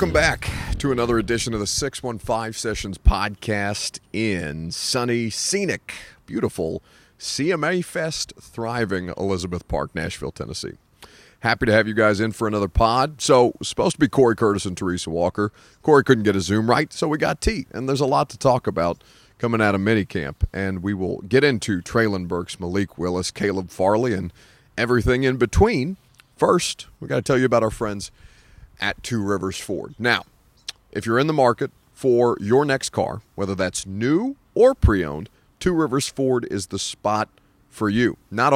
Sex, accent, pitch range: male, American, 95-130 Hz